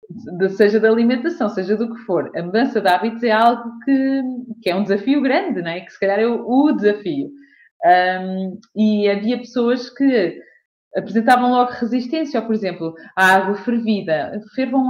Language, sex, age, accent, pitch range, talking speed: Portuguese, female, 20-39, Brazilian, 200-270 Hz, 175 wpm